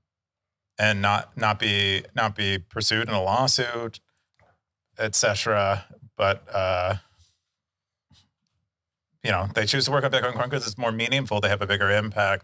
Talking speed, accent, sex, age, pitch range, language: 145 wpm, American, male, 30-49, 95-110 Hz, English